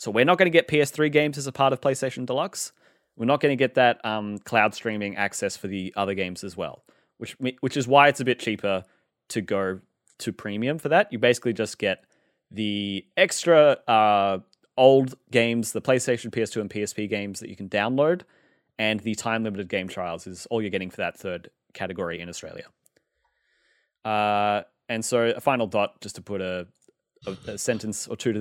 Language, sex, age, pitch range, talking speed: English, male, 20-39, 105-135 Hz, 195 wpm